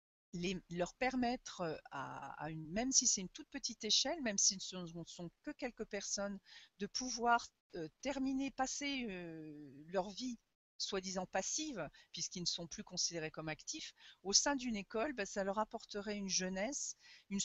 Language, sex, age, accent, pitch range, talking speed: French, female, 40-59, French, 175-230 Hz, 170 wpm